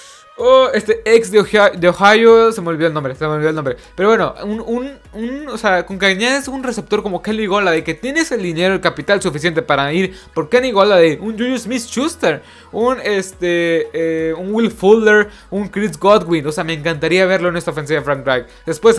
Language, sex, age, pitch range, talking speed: Spanish, male, 20-39, 160-205 Hz, 215 wpm